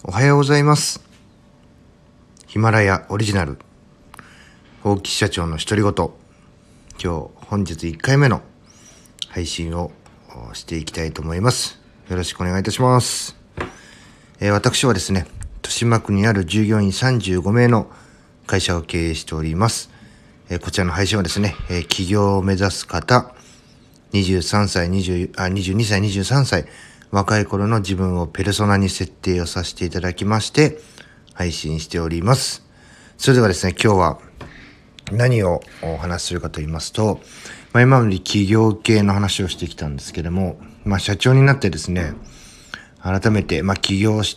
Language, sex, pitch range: Japanese, male, 90-115 Hz